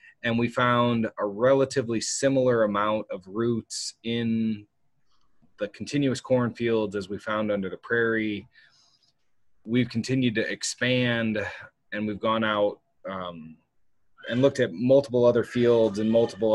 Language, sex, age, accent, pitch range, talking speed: English, male, 20-39, American, 105-120 Hz, 130 wpm